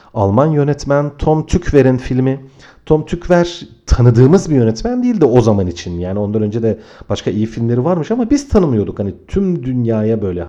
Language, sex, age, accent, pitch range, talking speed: Turkish, male, 40-59, native, 105-130 Hz, 165 wpm